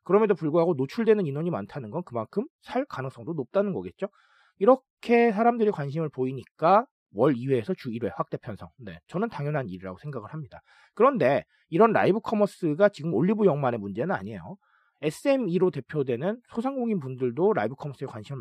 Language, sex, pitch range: Korean, male, 140-230 Hz